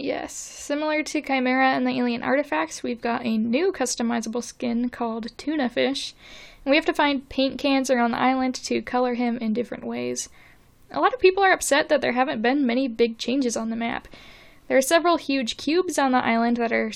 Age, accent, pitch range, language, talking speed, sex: 10-29, American, 235-280 Hz, English, 205 wpm, female